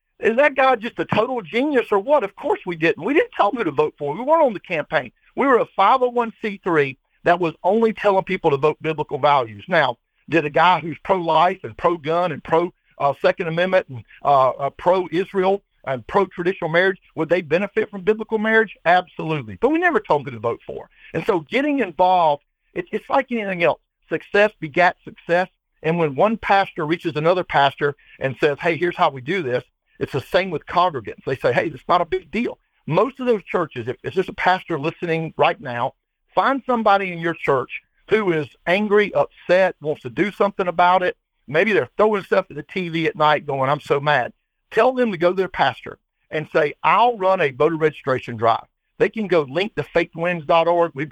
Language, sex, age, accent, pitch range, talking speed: English, male, 60-79, American, 155-200 Hz, 205 wpm